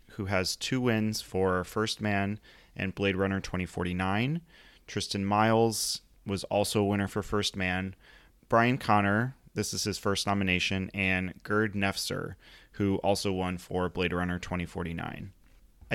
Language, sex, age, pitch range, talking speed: English, male, 30-49, 95-105 Hz, 140 wpm